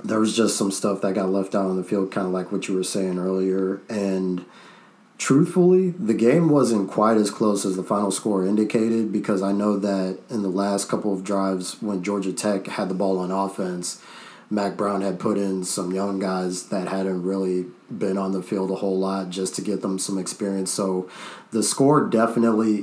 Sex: male